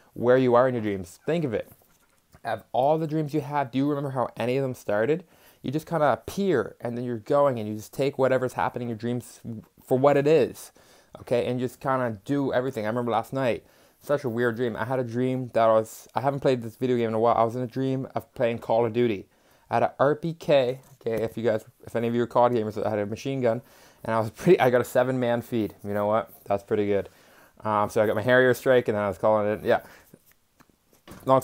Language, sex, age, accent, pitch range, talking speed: English, male, 20-39, American, 110-135 Hz, 260 wpm